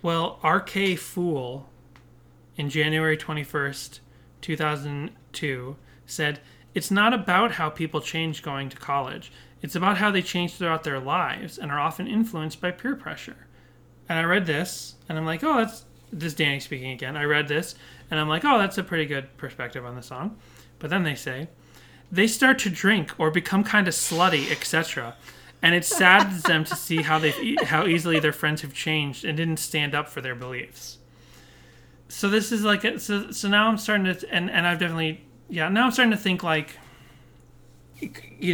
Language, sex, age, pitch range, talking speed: English, male, 30-49, 140-180 Hz, 185 wpm